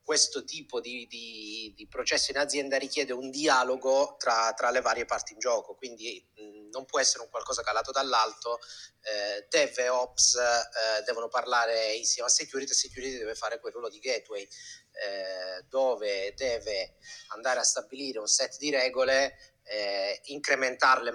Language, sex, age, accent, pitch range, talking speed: Italian, male, 30-49, native, 115-145 Hz, 160 wpm